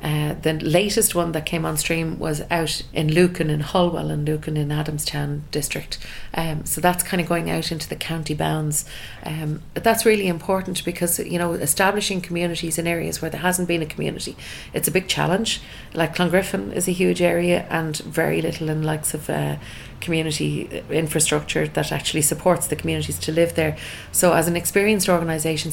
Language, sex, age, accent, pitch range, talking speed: English, female, 30-49, Irish, 150-170 Hz, 185 wpm